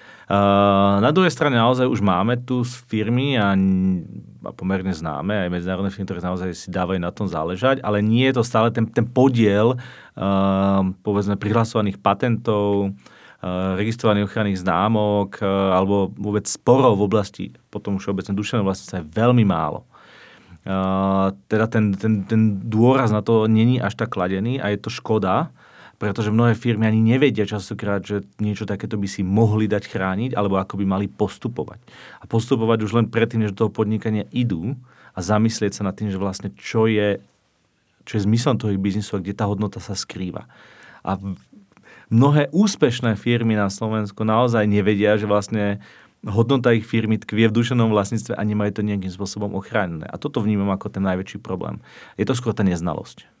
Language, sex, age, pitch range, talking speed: Slovak, male, 40-59, 100-115 Hz, 170 wpm